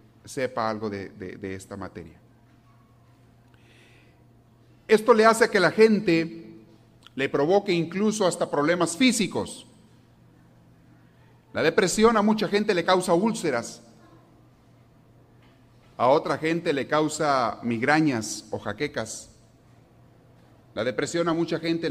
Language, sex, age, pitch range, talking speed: Spanish, male, 40-59, 115-165 Hz, 110 wpm